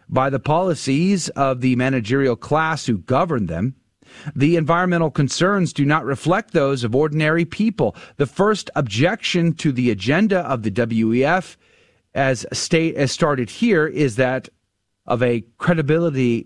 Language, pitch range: English, 115-160 Hz